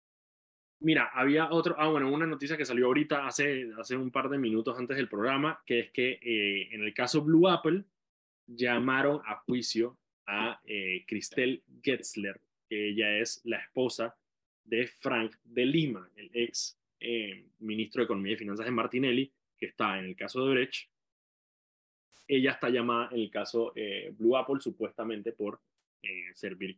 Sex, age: male, 20-39